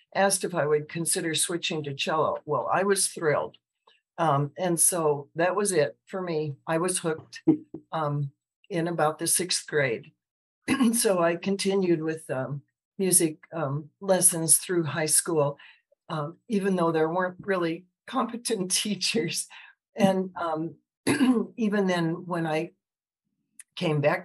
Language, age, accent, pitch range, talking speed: English, 60-79, American, 150-185 Hz, 140 wpm